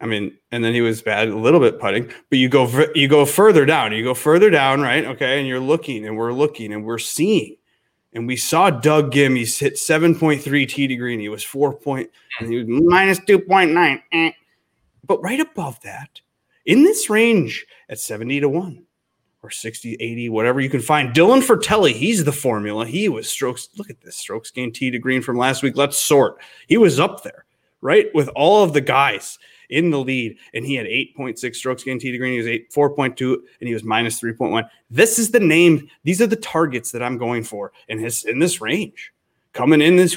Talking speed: 210 wpm